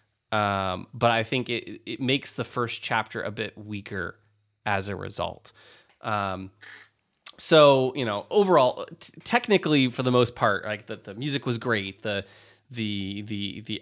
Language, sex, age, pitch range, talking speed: English, male, 20-39, 105-130 Hz, 165 wpm